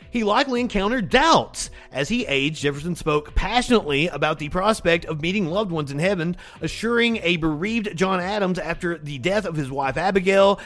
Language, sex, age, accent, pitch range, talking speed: English, male, 30-49, American, 150-205 Hz, 175 wpm